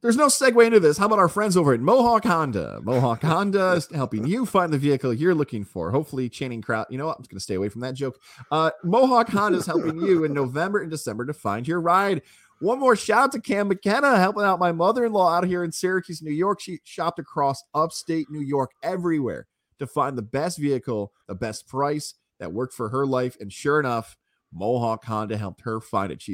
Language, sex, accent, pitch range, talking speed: English, male, American, 110-160 Hz, 225 wpm